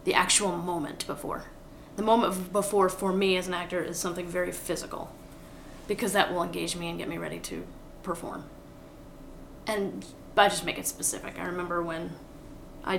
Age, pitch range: 20-39, 175-195 Hz